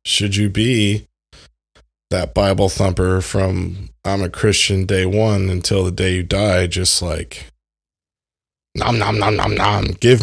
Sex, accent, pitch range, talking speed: male, American, 85-105 Hz, 145 wpm